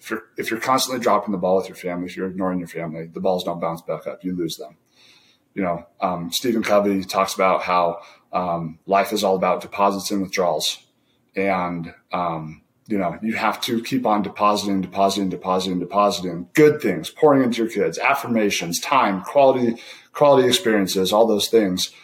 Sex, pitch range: male, 90-115 Hz